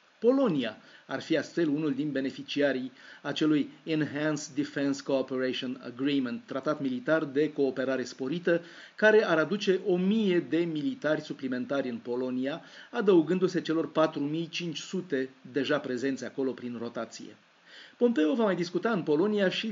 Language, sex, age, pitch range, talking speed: Romanian, male, 30-49, 135-170 Hz, 125 wpm